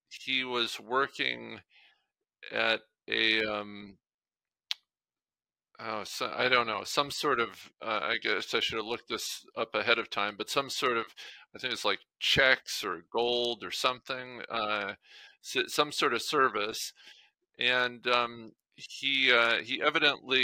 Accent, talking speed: American, 145 wpm